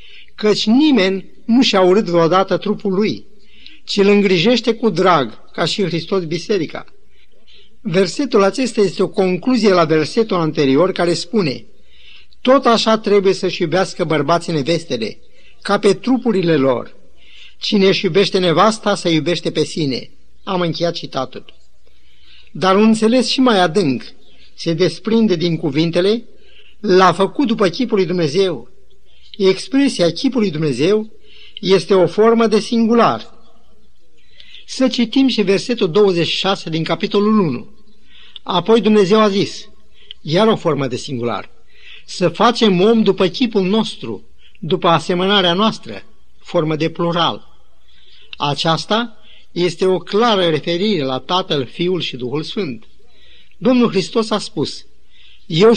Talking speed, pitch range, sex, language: 125 wpm, 170-220 Hz, male, Romanian